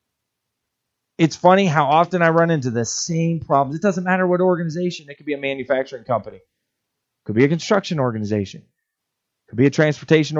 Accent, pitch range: American, 130-195 Hz